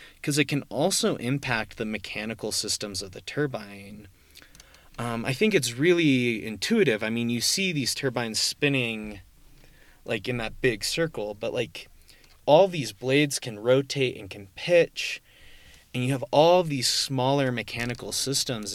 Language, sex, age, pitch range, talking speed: English, male, 30-49, 105-135 Hz, 145 wpm